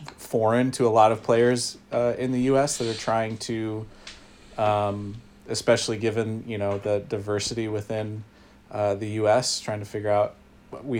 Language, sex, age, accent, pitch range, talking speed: English, male, 30-49, American, 100-115 Hz, 165 wpm